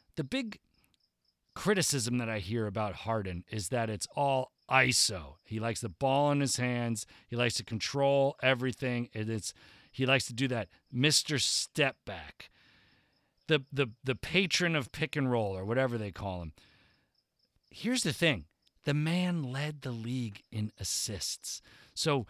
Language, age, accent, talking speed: English, 40-59, American, 145 wpm